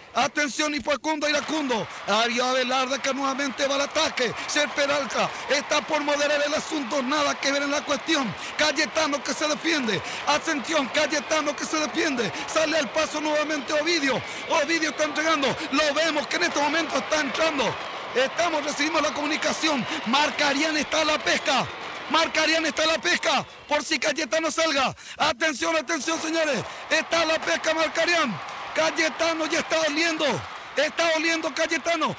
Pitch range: 295-330 Hz